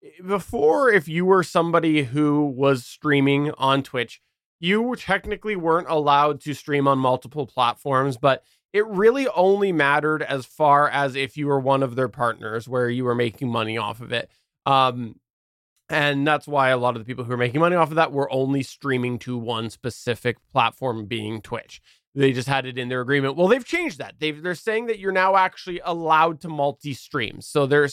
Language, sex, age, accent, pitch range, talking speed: English, male, 20-39, American, 135-190 Hz, 190 wpm